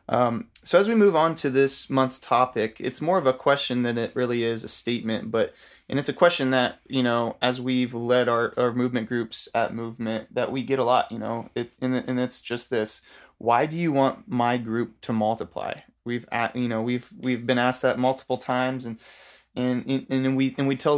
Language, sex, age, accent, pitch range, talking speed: English, male, 20-39, American, 120-130 Hz, 225 wpm